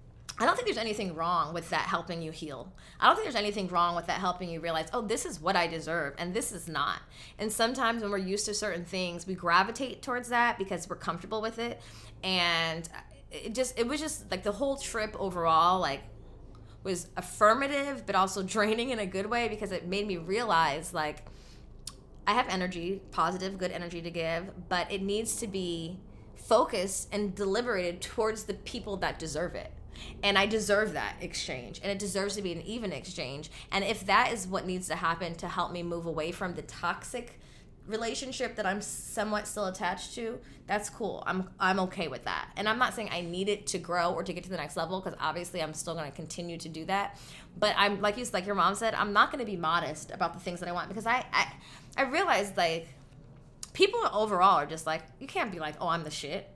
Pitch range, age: 165-215 Hz, 20-39